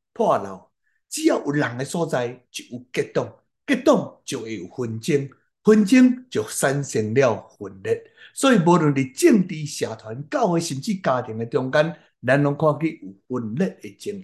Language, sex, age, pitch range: Chinese, male, 60-79, 140-215 Hz